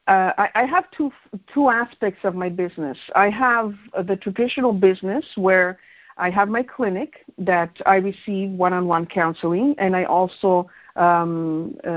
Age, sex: 50-69, female